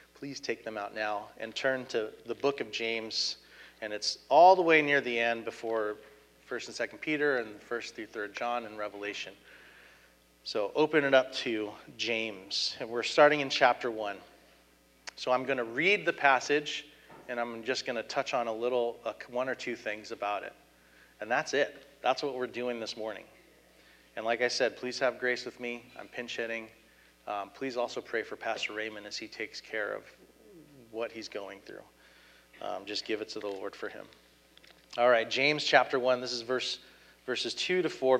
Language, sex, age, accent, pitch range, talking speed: English, male, 30-49, American, 100-135 Hz, 195 wpm